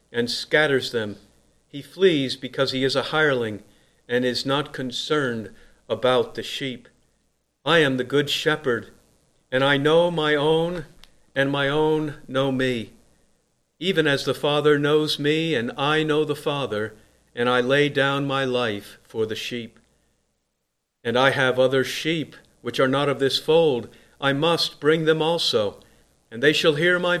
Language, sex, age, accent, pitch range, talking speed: English, male, 50-69, American, 125-155 Hz, 160 wpm